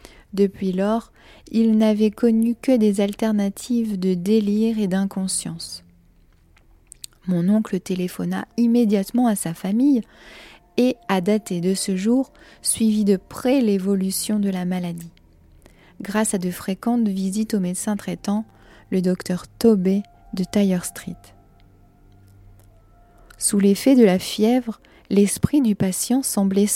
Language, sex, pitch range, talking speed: French, female, 180-220 Hz, 125 wpm